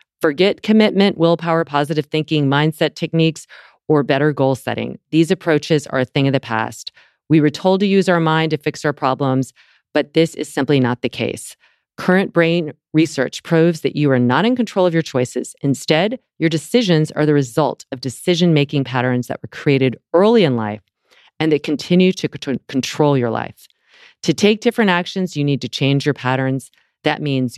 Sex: female